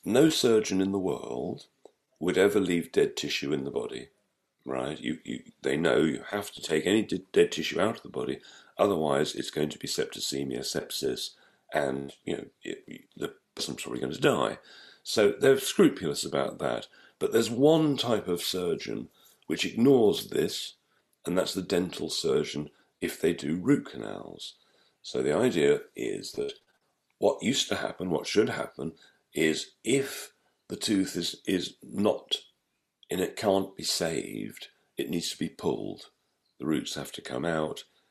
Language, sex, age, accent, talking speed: English, male, 50-69, British, 165 wpm